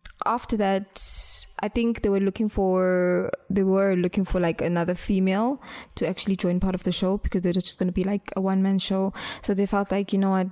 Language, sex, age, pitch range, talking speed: English, female, 20-39, 185-215 Hz, 220 wpm